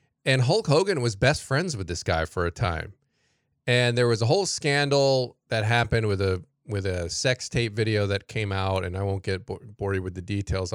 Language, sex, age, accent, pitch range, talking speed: English, male, 20-39, American, 100-130 Hz, 220 wpm